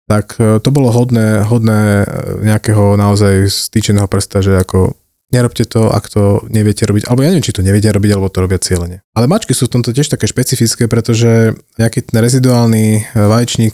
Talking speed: 180 wpm